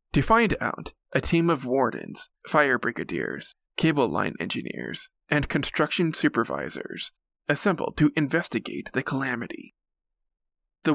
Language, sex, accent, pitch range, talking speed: English, male, American, 125-165 Hz, 115 wpm